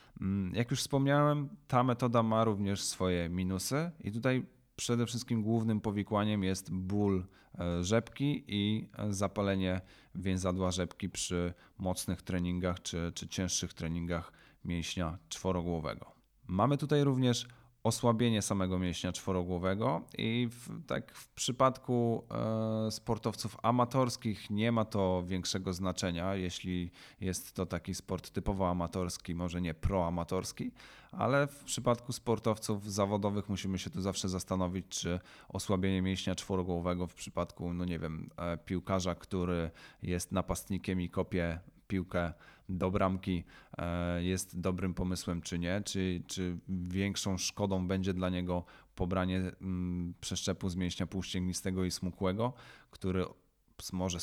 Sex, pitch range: male, 90-105 Hz